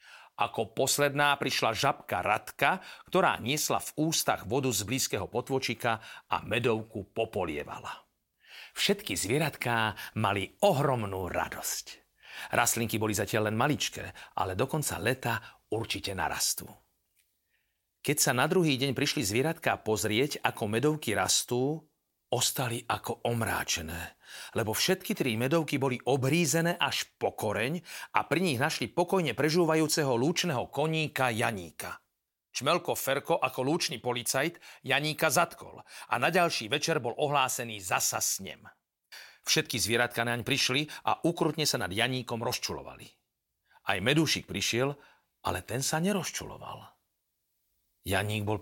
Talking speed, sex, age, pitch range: 120 wpm, male, 40-59, 110-150 Hz